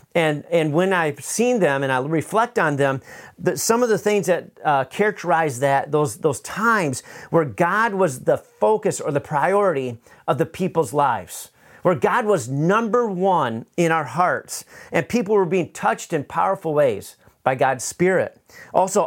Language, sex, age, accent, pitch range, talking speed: English, male, 40-59, American, 145-195 Hz, 175 wpm